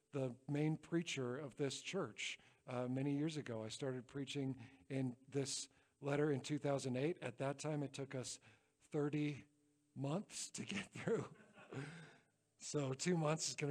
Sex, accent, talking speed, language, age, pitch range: male, American, 150 wpm, English, 50-69, 140-200 Hz